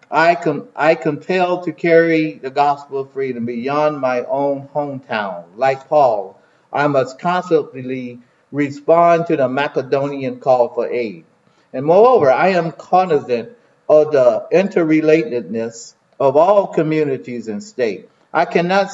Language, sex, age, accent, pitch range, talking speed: English, male, 50-69, American, 135-170 Hz, 130 wpm